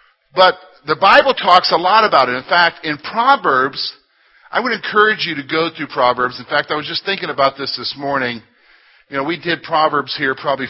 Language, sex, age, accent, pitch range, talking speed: English, male, 50-69, American, 135-205 Hz, 210 wpm